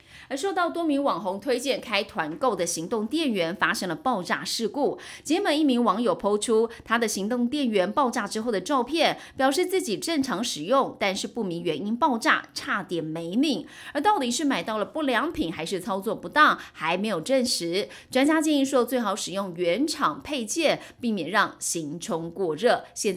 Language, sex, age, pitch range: Chinese, female, 30-49, 190-280 Hz